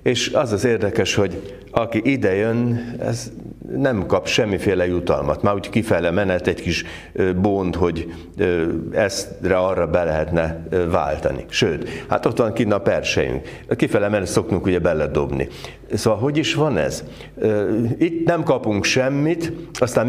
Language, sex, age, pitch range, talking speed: Hungarian, male, 60-79, 90-130 Hz, 140 wpm